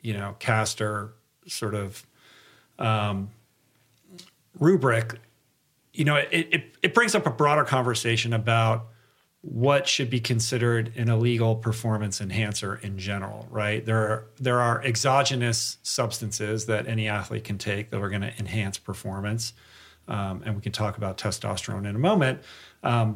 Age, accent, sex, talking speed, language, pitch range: 40-59, American, male, 140 wpm, English, 110-125 Hz